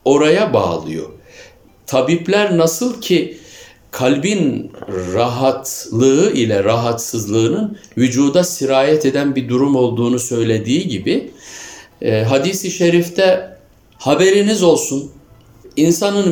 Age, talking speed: 60-79, 80 wpm